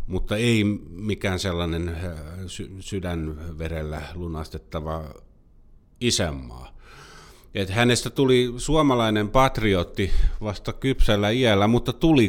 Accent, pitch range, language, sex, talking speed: native, 80-110 Hz, Finnish, male, 80 wpm